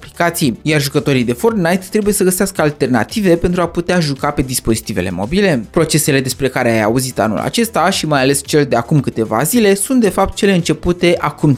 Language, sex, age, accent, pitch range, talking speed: Romanian, male, 20-39, native, 130-195 Hz, 185 wpm